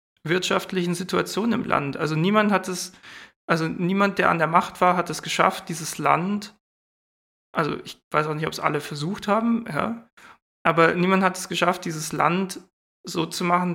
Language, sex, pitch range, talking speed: German, male, 165-190 Hz, 180 wpm